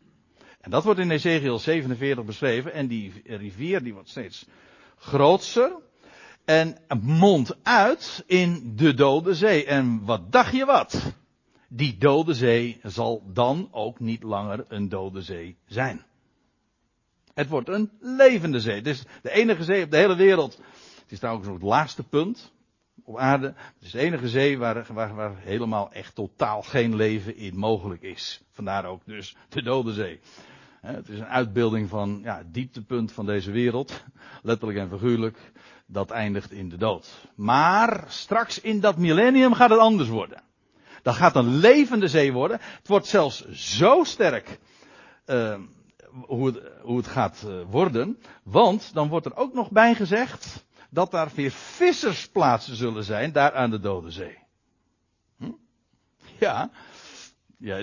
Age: 60-79